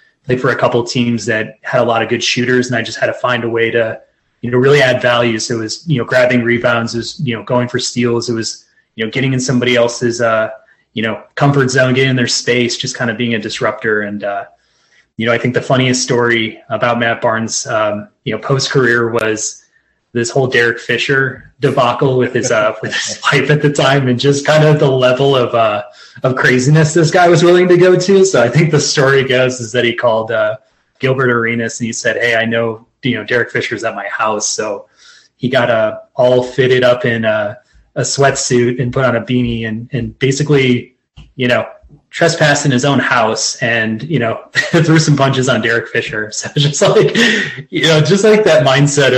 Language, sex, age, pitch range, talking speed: English, male, 30-49, 115-140 Hz, 220 wpm